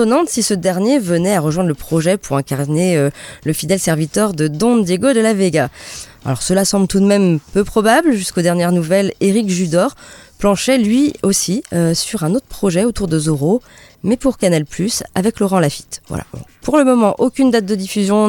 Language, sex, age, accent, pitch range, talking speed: French, female, 20-39, French, 170-230 Hz, 185 wpm